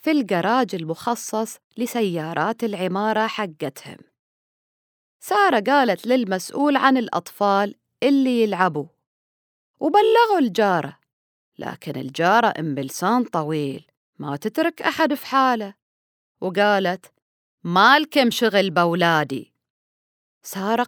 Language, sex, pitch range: Arabic, female, 175-260 Hz